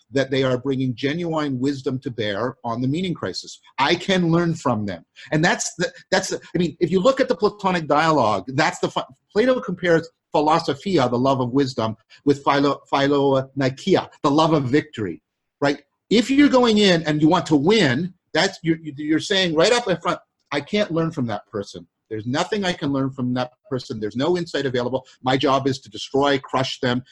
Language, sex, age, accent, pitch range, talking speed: English, male, 50-69, American, 125-160 Hz, 205 wpm